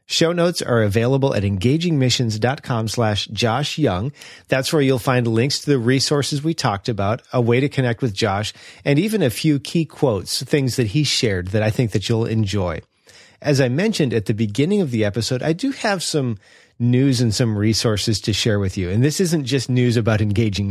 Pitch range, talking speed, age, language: 110-140 Hz, 200 wpm, 30-49, English